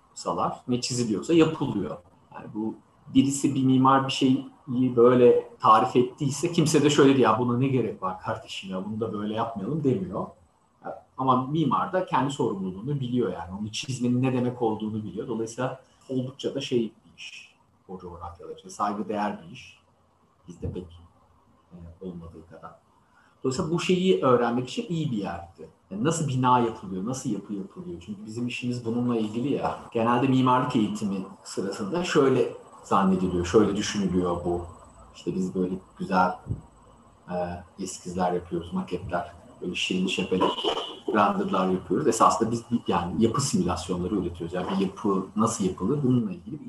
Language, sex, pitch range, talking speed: Turkish, male, 95-125 Hz, 145 wpm